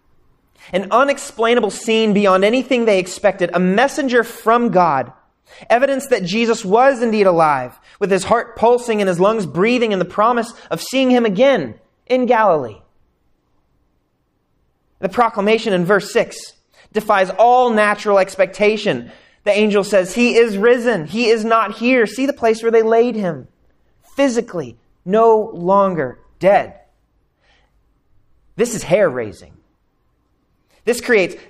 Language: English